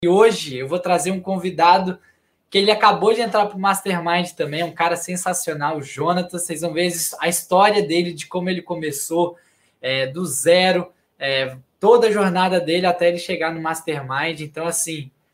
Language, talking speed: Portuguese, 180 wpm